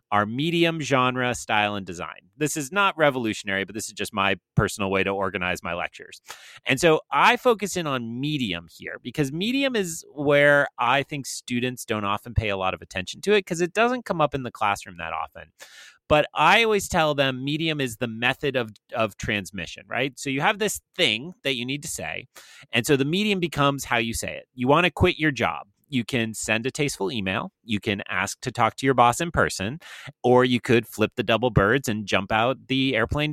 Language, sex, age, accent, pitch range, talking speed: English, male, 30-49, American, 105-155 Hz, 220 wpm